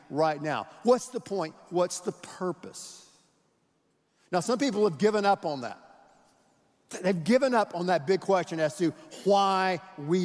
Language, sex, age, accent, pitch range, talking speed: English, male, 50-69, American, 155-190 Hz, 160 wpm